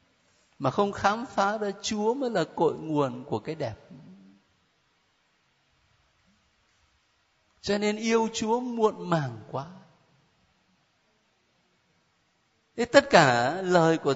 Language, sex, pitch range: Vietnamese, male, 155-245 Hz